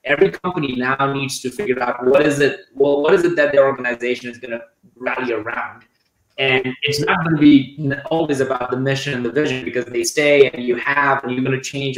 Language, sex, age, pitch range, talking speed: English, male, 20-39, 130-150 Hz, 230 wpm